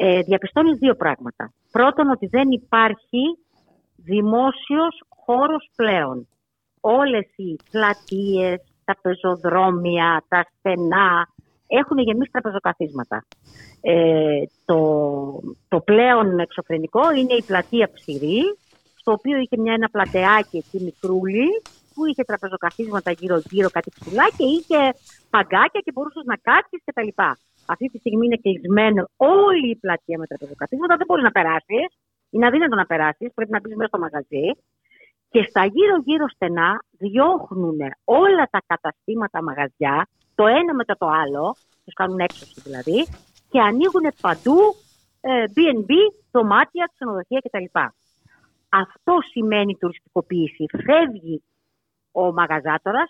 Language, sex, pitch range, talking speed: Greek, female, 170-260 Hz, 120 wpm